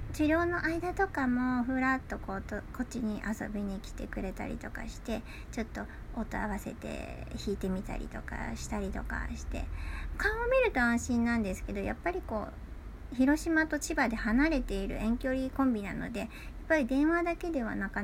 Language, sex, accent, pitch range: Japanese, male, native, 185-255 Hz